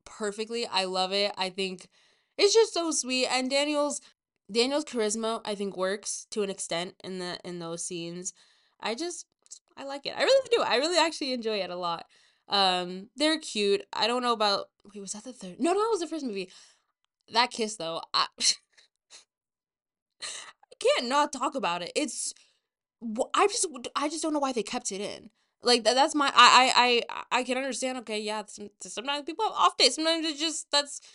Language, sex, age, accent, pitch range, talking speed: English, female, 20-39, American, 195-290 Hz, 195 wpm